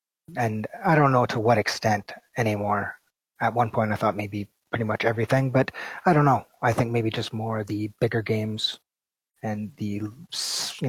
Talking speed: 180 wpm